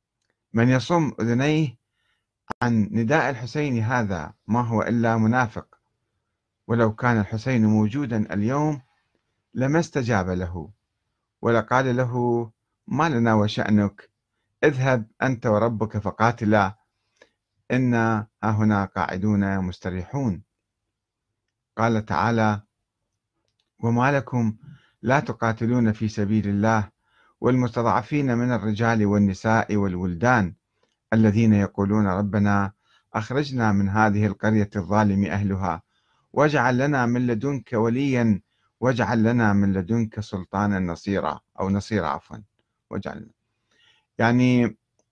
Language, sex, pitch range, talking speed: Arabic, male, 105-120 Hz, 95 wpm